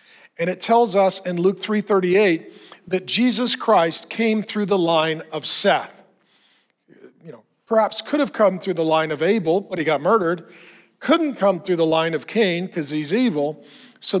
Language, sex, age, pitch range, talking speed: English, male, 50-69, 165-205 Hz, 175 wpm